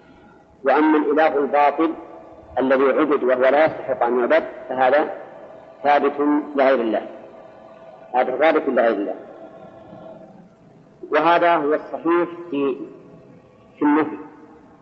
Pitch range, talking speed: 135-165 Hz, 90 wpm